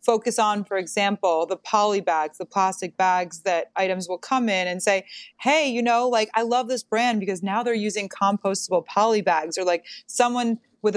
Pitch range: 175-210 Hz